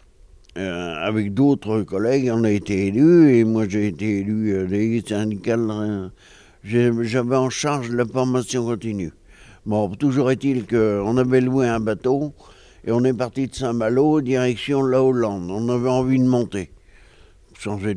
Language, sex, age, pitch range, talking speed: French, male, 60-79, 105-130 Hz, 155 wpm